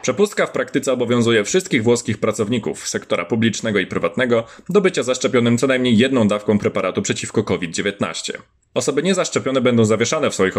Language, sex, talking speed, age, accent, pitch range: Polish, male, 155 wpm, 20-39, native, 110-130 Hz